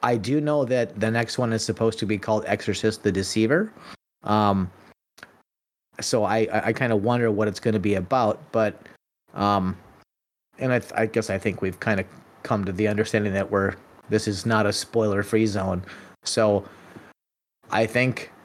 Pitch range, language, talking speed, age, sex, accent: 100-120 Hz, English, 180 wpm, 30-49, male, American